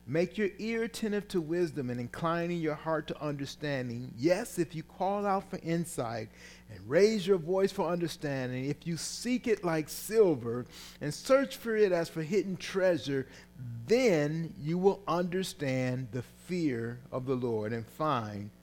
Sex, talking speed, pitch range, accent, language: male, 160 wpm, 105-150 Hz, American, English